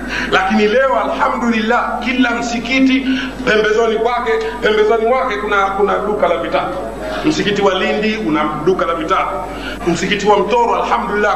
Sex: male